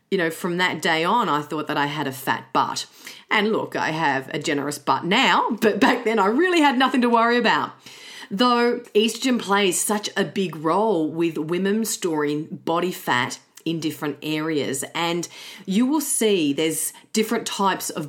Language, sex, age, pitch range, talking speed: English, female, 40-59, 150-195 Hz, 180 wpm